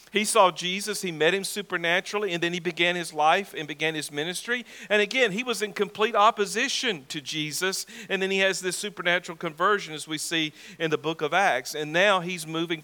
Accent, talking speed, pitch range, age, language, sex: American, 210 wpm, 155-195 Hz, 50-69, English, male